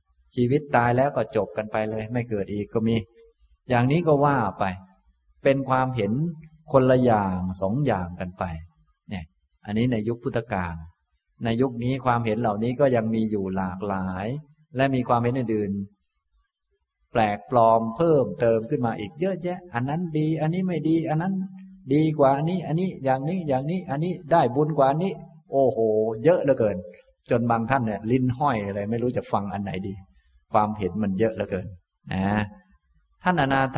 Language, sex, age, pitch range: Thai, male, 20-39, 100-145 Hz